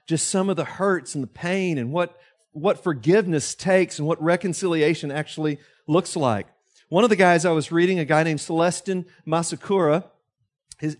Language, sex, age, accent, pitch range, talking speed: English, male, 40-59, American, 140-175 Hz, 175 wpm